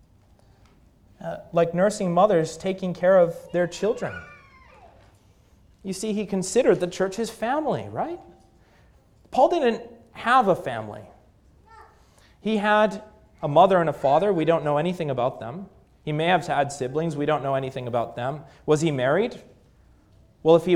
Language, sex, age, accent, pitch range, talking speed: English, male, 30-49, American, 130-190 Hz, 155 wpm